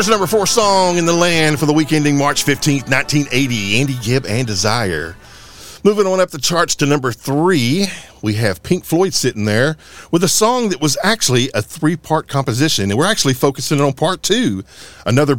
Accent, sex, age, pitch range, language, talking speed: American, male, 50-69, 110-160 Hz, English, 185 wpm